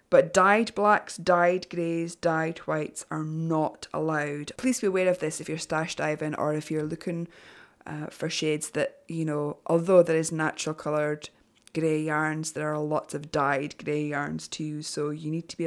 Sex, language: female, English